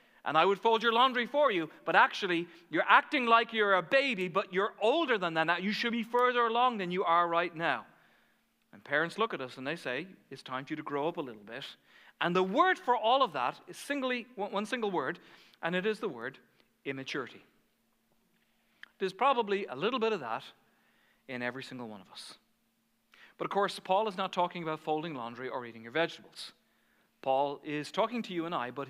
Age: 40-59